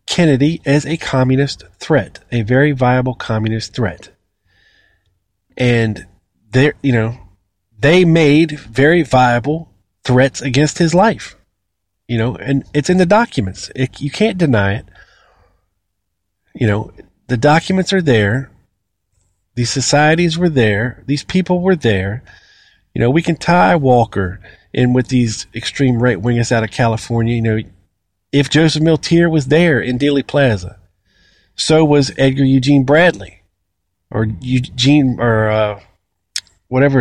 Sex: male